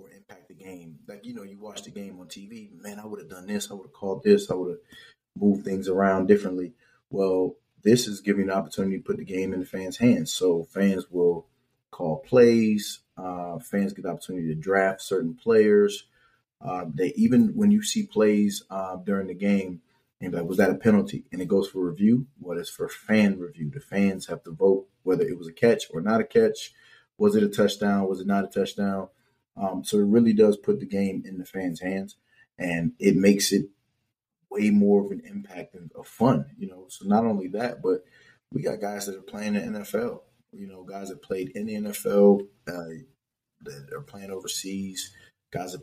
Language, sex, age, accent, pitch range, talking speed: English, male, 30-49, American, 95-115 Hz, 215 wpm